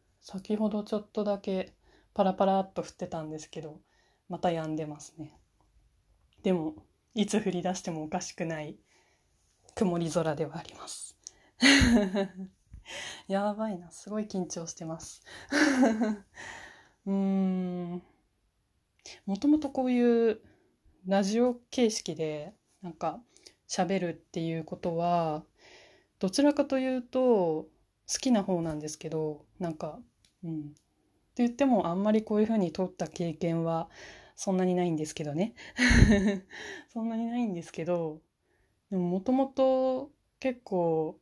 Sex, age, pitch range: female, 20-39, 160-215 Hz